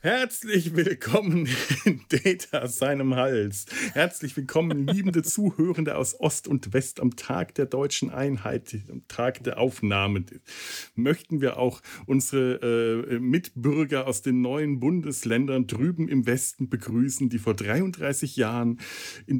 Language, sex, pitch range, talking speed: German, male, 110-150 Hz, 135 wpm